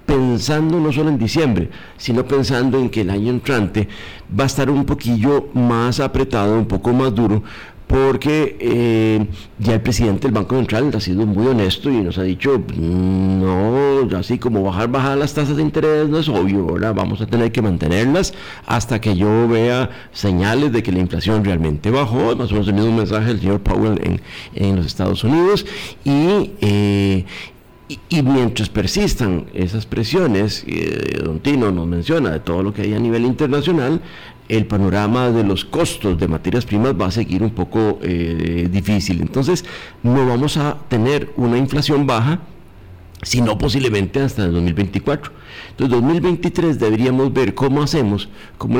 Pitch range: 100-135 Hz